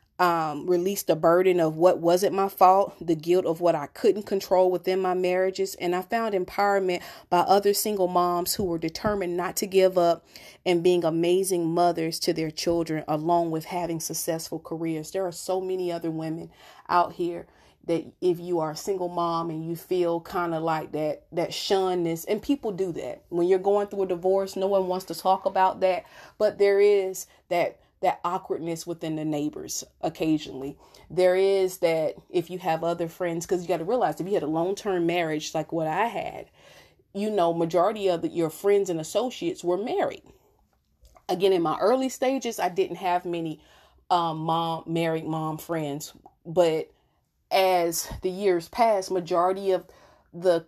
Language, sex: English, female